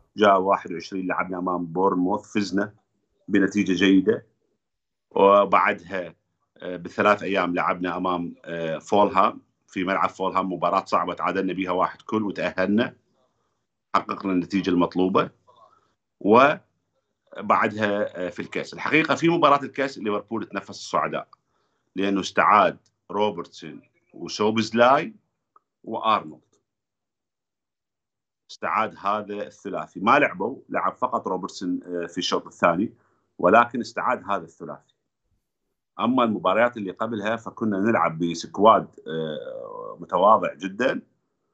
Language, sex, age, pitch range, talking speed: Arabic, male, 50-69, 90-105 Hz, 95 wpm